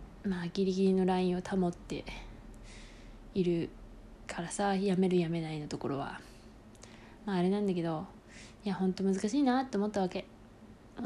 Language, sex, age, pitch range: Japanese, female, 20-39, 185-225 Hz